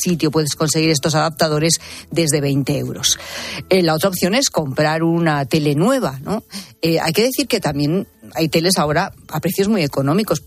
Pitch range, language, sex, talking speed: 150-195 Hz, Spanish, female, 180 wpm